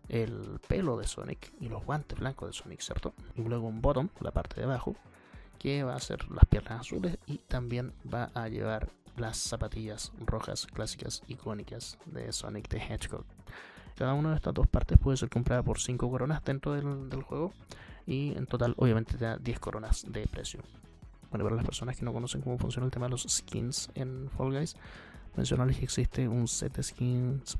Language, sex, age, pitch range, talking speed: Spanish, male, 20-39, 110-125 Hz, 195 wpm